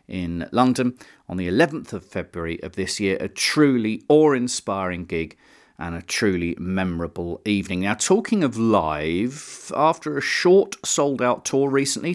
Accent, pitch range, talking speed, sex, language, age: British, 100-165 Hz, 145 wpm, male, English, 40-59